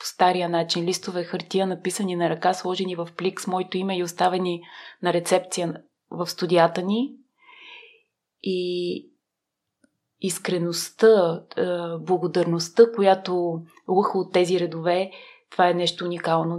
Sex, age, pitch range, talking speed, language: female, 20-39, 175-200 Hz, 120 wpm, Bulgarian